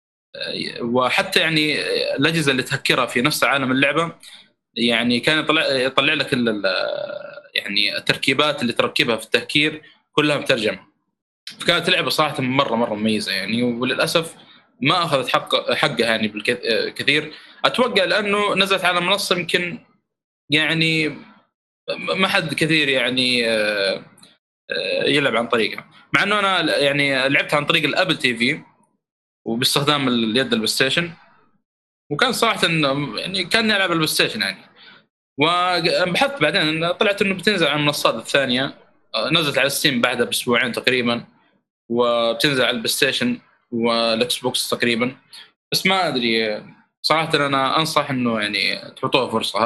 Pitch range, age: 125-180 Hz, 20-39